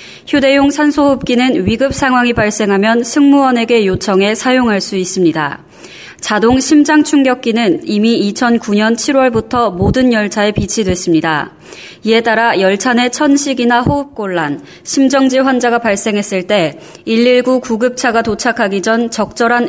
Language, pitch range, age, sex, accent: Korean, 200-250 Hz, 20-39, female, native